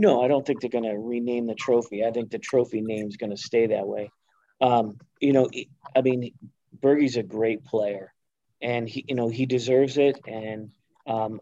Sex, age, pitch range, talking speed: male, 40-59, 115-130 Hz, 205 wpm